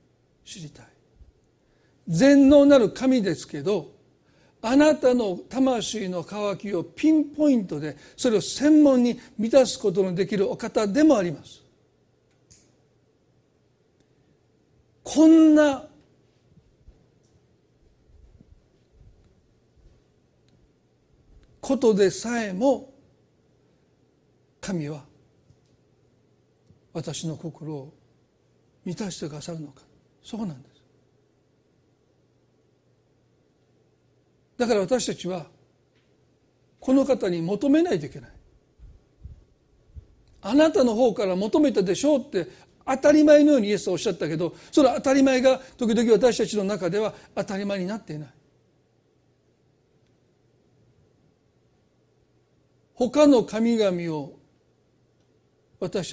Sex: male